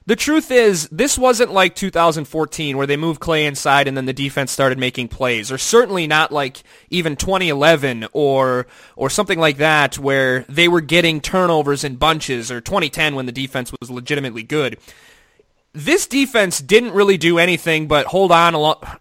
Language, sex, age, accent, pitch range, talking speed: English, male, 20-39, American, 145-195 Hz, 170 wpm